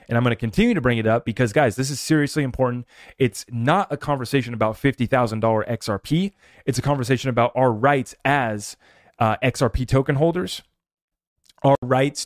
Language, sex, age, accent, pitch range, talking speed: English, male, 30-49, American, 120-145 Hz, 170 wpm